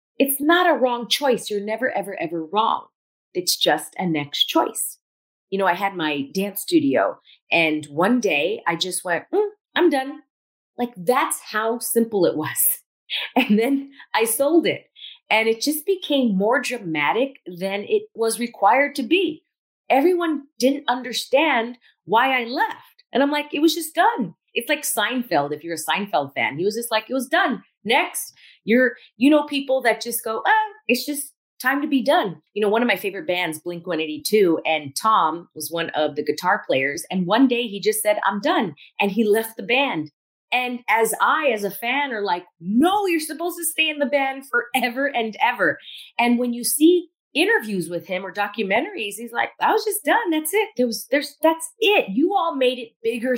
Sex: female